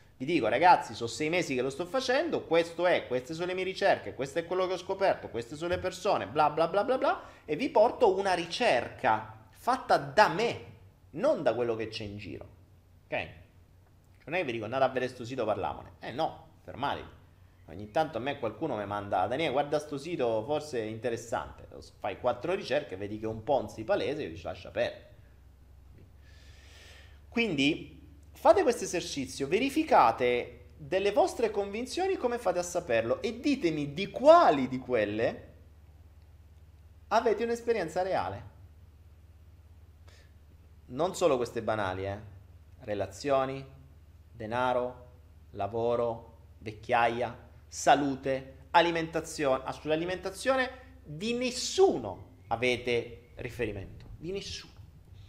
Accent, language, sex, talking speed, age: native, Italian, male, 140 wpm, 30-49